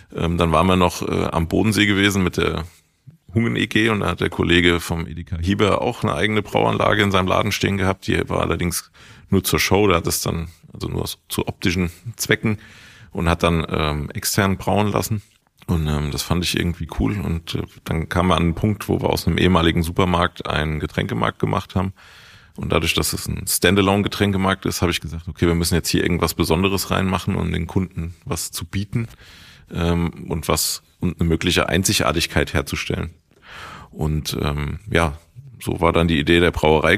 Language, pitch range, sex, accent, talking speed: German, 85-100 Hz, male, German, 195 wpm